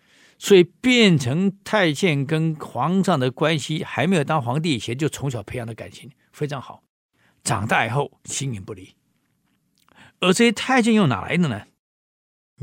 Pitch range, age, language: 125-190 Hz, 50-69, Chinese